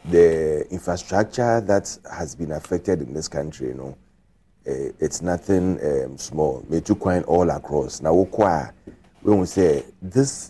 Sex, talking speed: male, 135 wpm